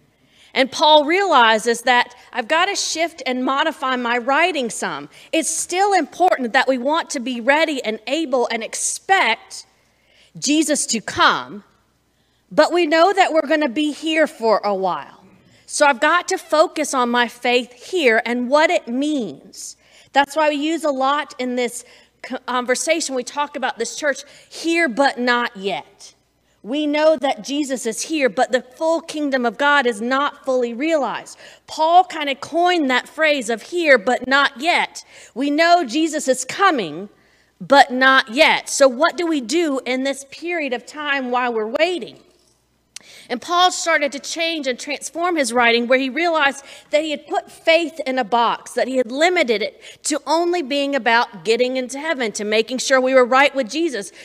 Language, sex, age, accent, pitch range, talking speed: English, female, 40-59, American, 245-315 Hz, 175 wpm